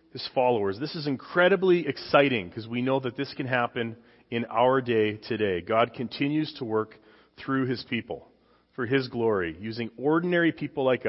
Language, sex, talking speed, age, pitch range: English, male, 160 wpm, 30-49, 115-155 Hz